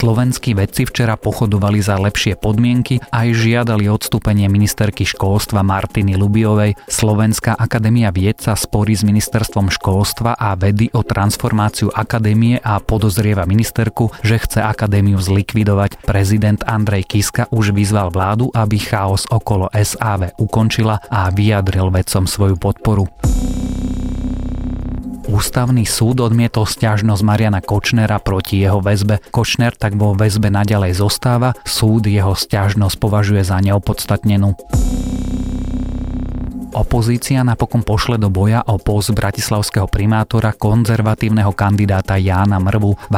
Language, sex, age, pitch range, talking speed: Slovak, male, 30-49, 100-110 Hz, 120 wpm